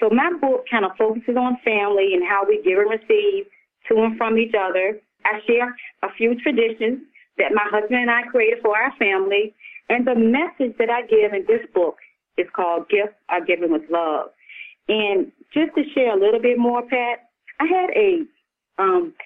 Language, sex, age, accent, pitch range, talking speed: English, female, 30-49, American, 210-300 Hz, 190 wpm